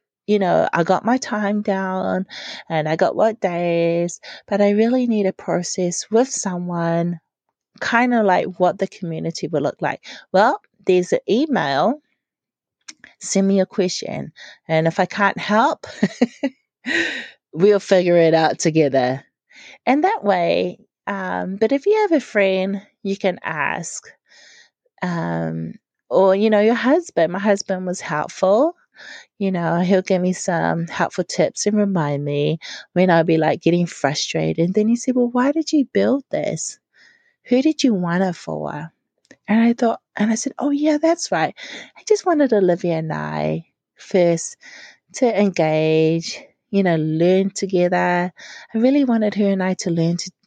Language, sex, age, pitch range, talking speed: English, female, 30-49, 165-225 Hz, 160 wpm